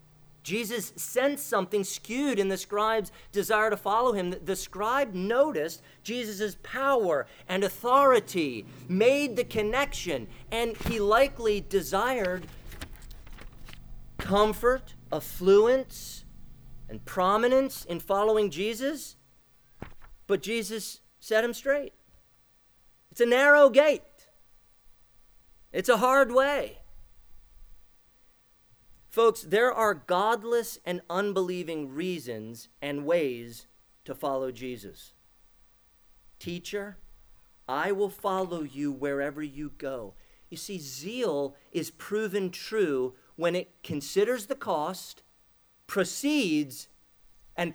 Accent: American